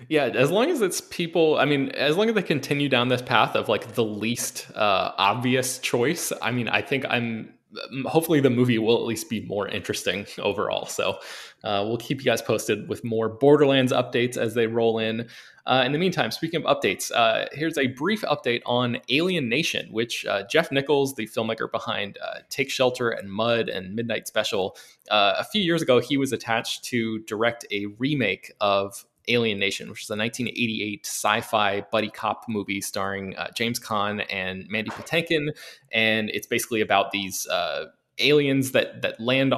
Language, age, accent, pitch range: English, 20-39, American, 105-135 Hz